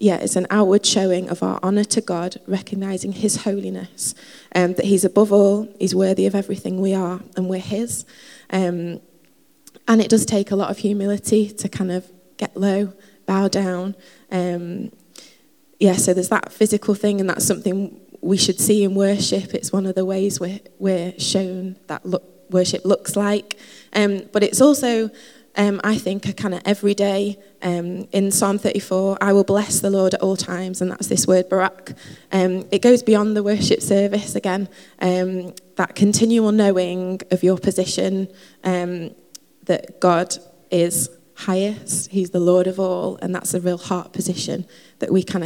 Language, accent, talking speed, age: English, British, 175 wpm, 20-39